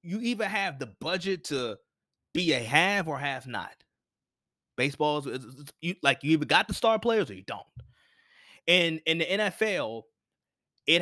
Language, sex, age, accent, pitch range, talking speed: English, male, 20-39, American, 135-175 Hz, 150 wpm